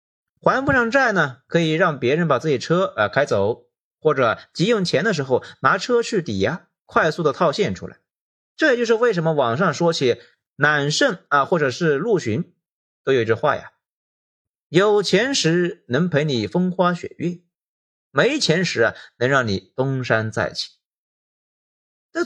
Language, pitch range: Chinese, 140-220 Hz